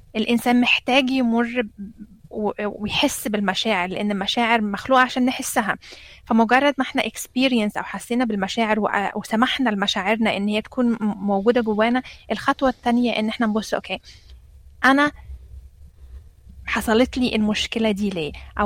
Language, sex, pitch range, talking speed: Arabic, female, 205-250 Hz, 115 wpm